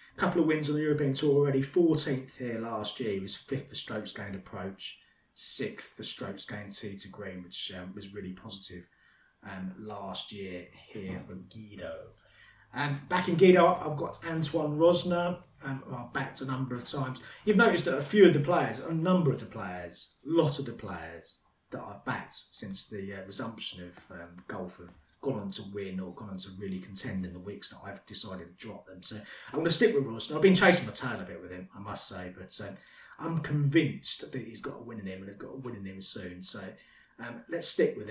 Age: 30-49